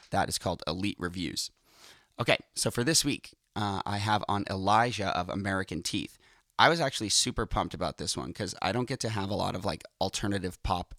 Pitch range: 95-115 Hz